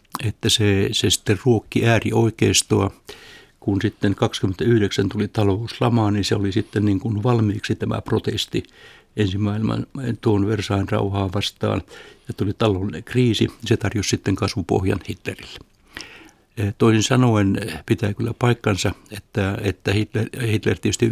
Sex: male